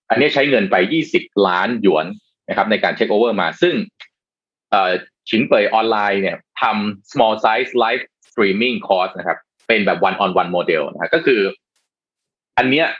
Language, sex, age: Thai, male, 20-39